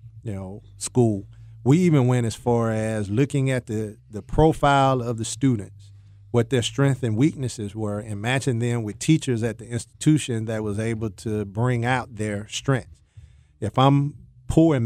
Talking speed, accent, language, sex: 175 wpm, American, English, male